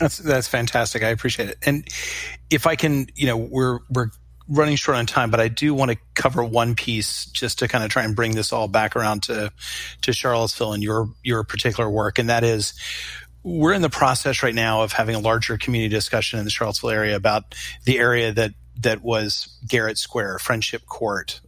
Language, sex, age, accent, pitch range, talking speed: English, male, 40-59, American, 110-125 Hz, 205 wpm